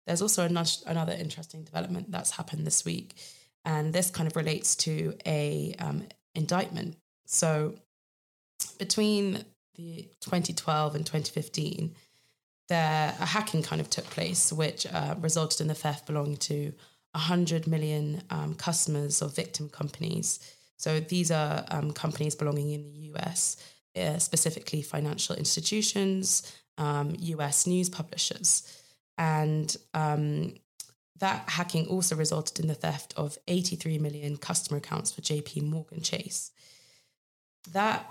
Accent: British